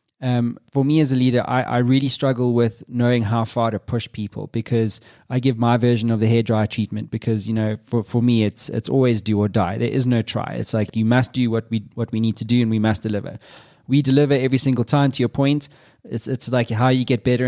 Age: 20-39